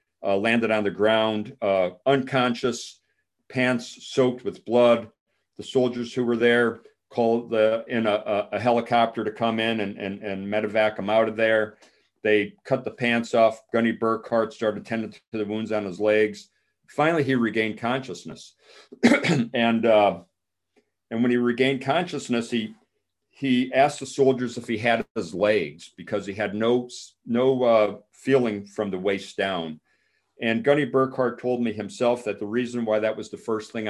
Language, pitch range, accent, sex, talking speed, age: English, 100-120 Hz, American, male, 170 wpm, 50-69